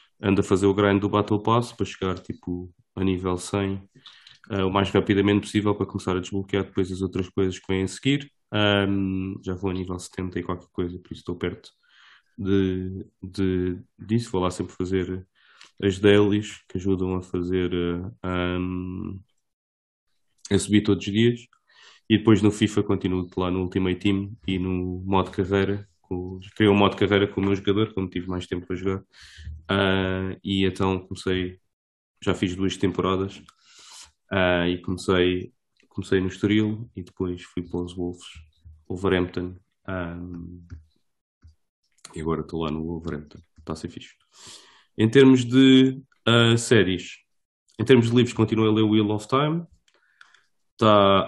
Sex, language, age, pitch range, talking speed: male, English, 20-39, 90-105 Hz, 165 wpm